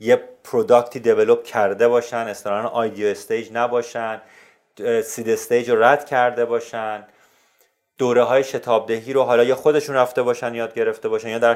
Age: 30-49